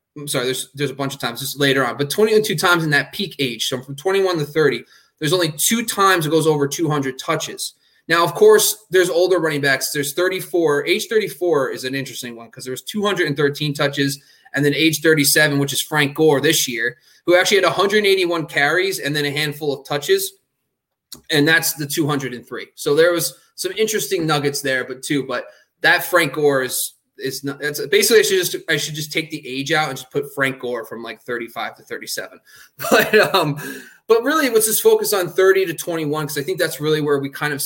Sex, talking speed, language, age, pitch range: male, 215 wpm, English, 20-39, 140-185 Hz